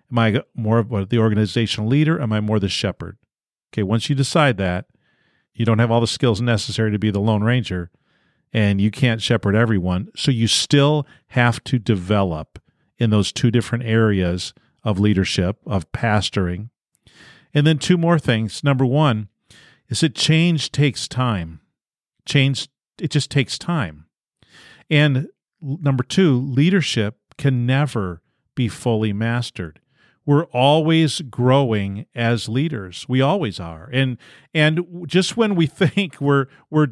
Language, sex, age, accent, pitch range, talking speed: English, male, 40-59, American, 110-145 Hz, 150 wpm